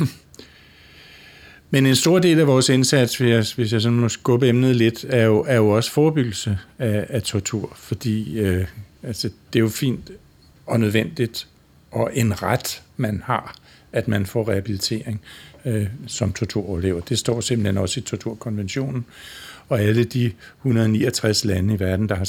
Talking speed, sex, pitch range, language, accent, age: 165 wpm, male, 100-120 Hz, Danish, native, 60-79